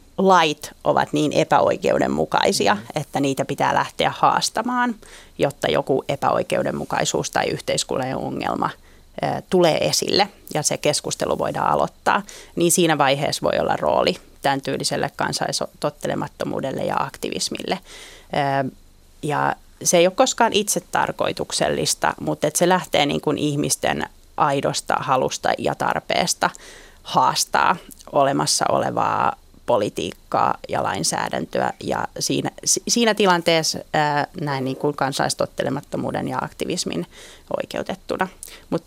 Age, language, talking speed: 30-49, Finnish, 100 wpm